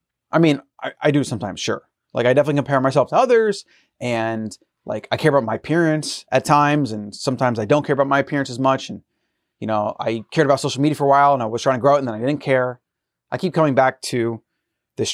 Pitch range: 120-150 Hz